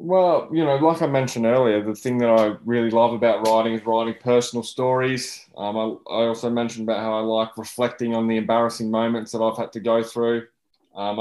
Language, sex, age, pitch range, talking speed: English, male, 20-39, 105-115 Hz, 215 wpm